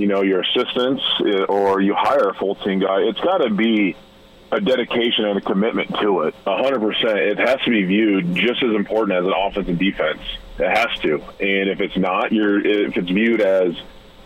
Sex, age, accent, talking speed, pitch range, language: male, 30-49, American, 195 wpm, 95-115 Hz, English